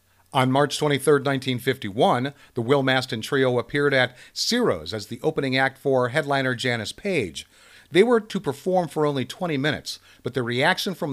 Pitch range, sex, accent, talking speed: 125-155 Hz, male, American, 165 wpm